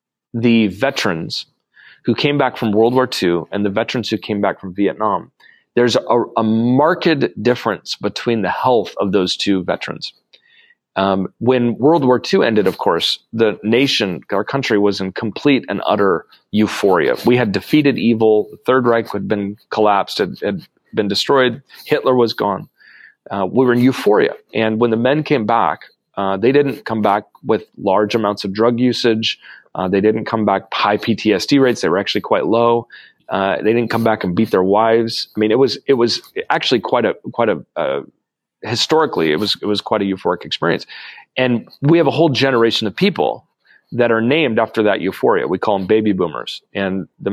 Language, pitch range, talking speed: English, 105-125 Hz, 190 wpm